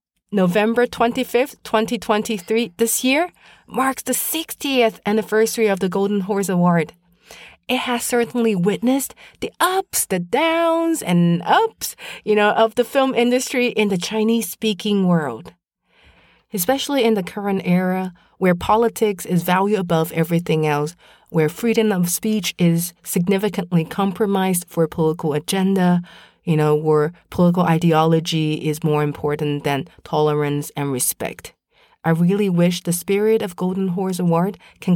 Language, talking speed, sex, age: English, 135 wpm, female, 30-49